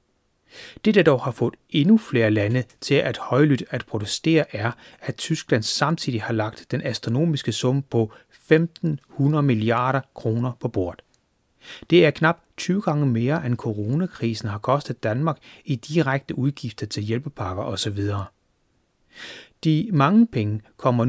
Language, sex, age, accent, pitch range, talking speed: Danish, male, 30-49, native, 110-150 Hz, 140 wpm